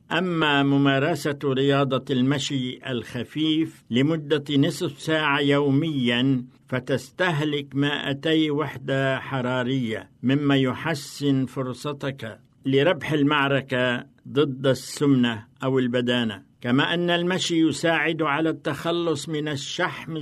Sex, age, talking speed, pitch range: male, 60-79, 90 wpm, 135-160 Hz